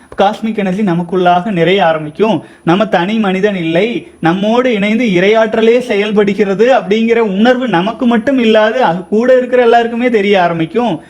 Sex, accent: male, native